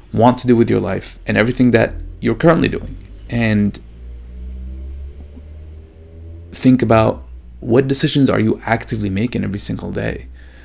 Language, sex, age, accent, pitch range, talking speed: English, male, 30-49, Canadian, 90-115 Hz, 135 wpm